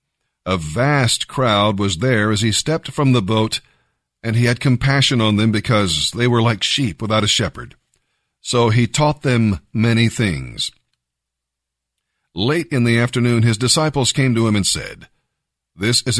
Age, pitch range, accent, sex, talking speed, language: 50-69, 95-125 Hz, American, male, 165 wpm, English